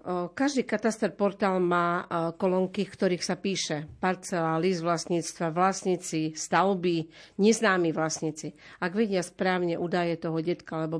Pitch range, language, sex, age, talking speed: 160-185 Hz, Slovak, female, 50-69, 120 wpm